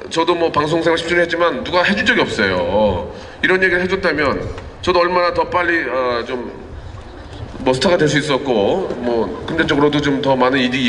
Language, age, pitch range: Korean, 40-59, 135-180 Hz